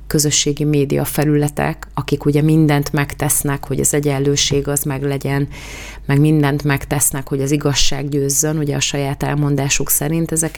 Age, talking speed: 30-49, 145 wpm